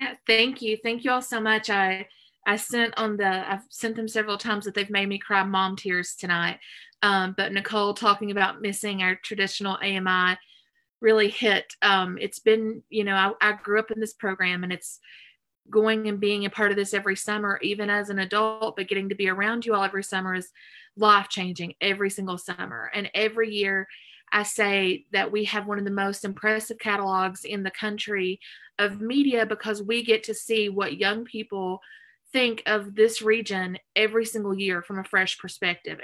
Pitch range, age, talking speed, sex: 190-220 Hz, 30-49, 195 wpm, female